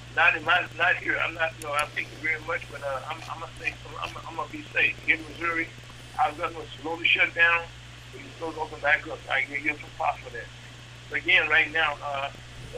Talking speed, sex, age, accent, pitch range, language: 230 wpm, male, 60-79, American, 120-155 Hz, English